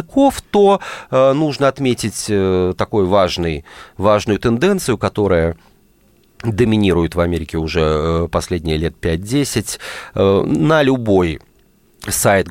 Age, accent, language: 30-49, native, Russian